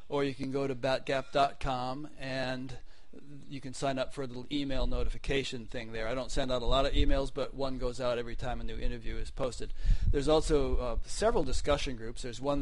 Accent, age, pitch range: American, 40-59, 120-140 Hz